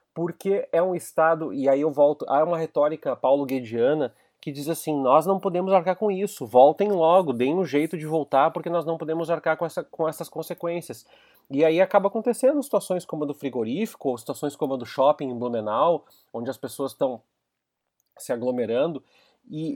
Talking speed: 185 wpm